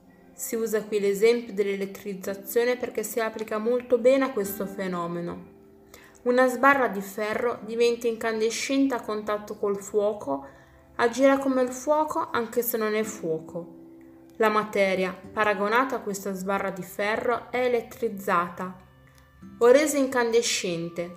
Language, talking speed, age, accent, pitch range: Italian, 130 wpm, 20-39, native, 185-235 Hz